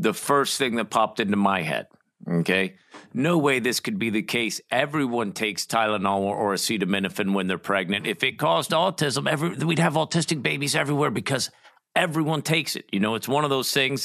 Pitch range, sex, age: 135-185 Hz, male, 50-69